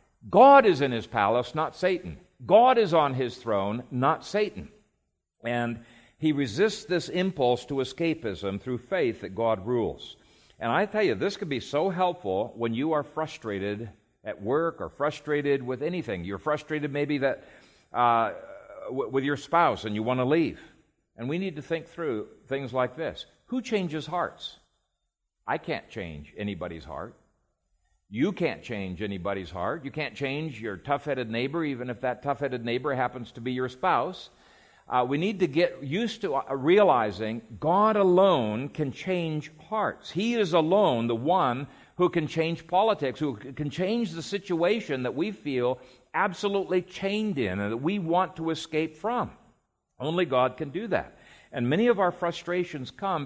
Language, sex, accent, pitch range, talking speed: English, male, American, 120-175 Hz, 165 wpm